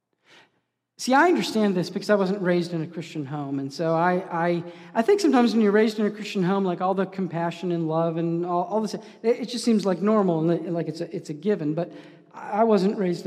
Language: English